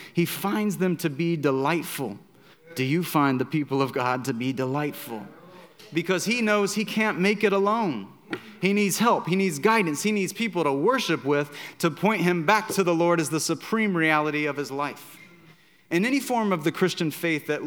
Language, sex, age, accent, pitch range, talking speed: English, male, 30-49, American, 150-190 Hz, 195 wpm